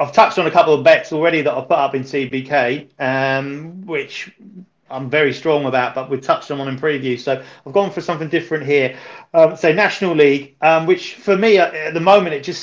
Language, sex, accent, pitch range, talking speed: English, male, British, 135-160 Hz, 230 wpm